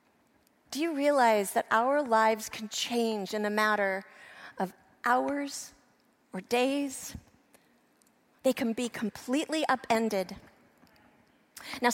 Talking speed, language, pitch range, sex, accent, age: 105 wpm, English, 230-300 Hz, female, American, 40-59